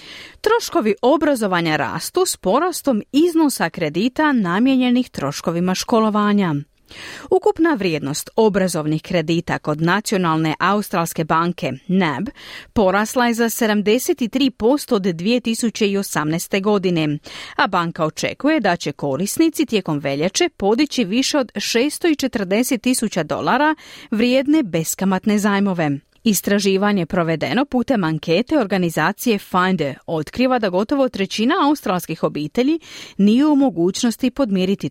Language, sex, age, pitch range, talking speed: Croatian, female, 40-59, 170-250 Hz, 100 wpm